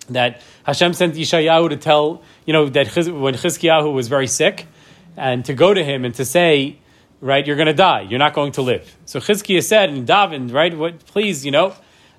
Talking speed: 200 wpm